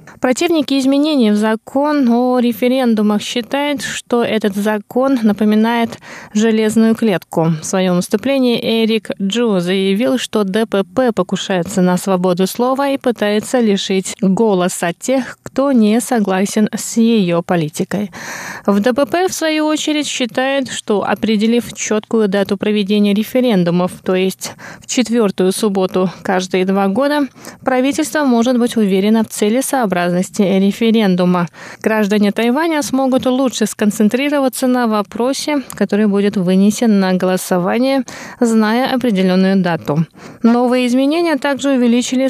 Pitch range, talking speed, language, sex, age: 195-250 Hz, 120 wpm, Russian, female, 20-39